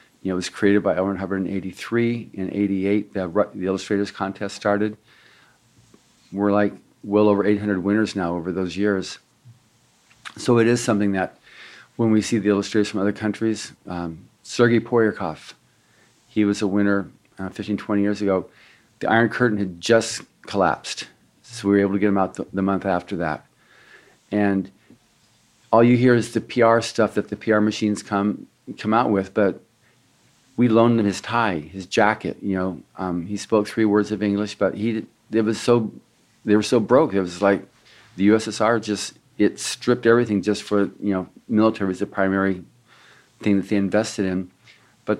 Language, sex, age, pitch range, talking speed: English, male, 50-69, 95-110 Hz, 180 wpm